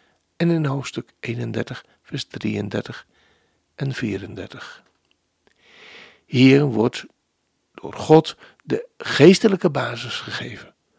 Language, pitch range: Dutch, 115-165 Hz